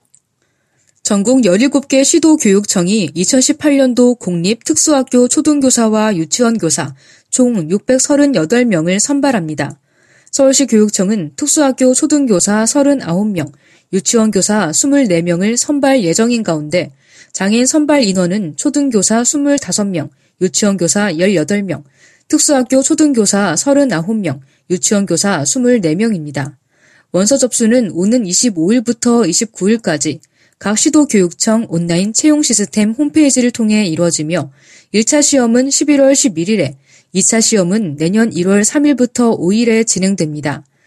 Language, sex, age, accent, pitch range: Korean, female, 20-39, native, 175-255 Hz